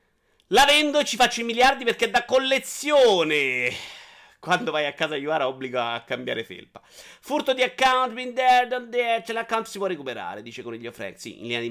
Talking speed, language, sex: 205 wpm, Italian, male